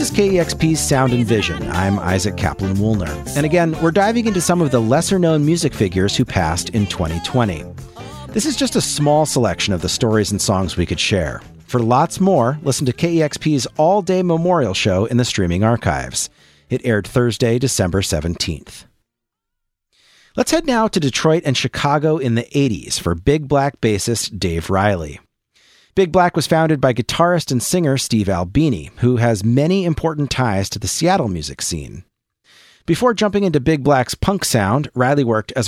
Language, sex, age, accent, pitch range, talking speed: English, male, 40-59, American, 100-155 Hz, 170 wpm